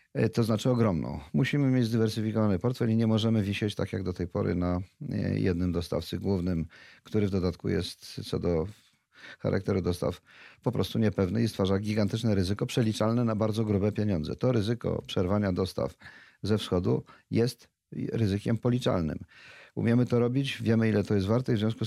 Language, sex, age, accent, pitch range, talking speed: Polish, male, 40-59, native, 95-115 Hz, 165 wpm